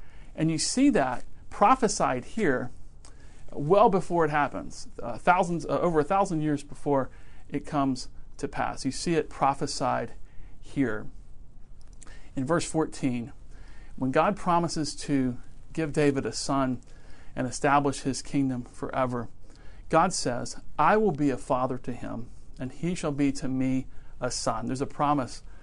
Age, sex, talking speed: 40-59, male, 145 wpm